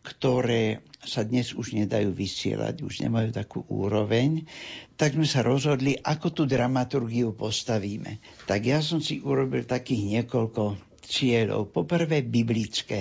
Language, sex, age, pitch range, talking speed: Slovak, male, 60-79, 115-140 Hz, 130 wpm